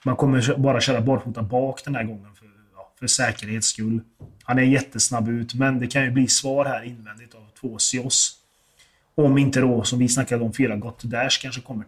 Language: Swedish